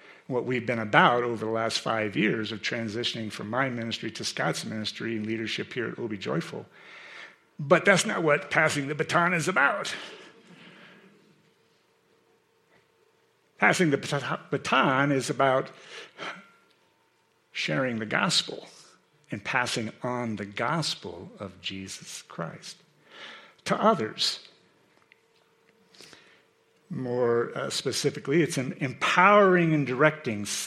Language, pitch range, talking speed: English, 115-180 Hz, 115 wpm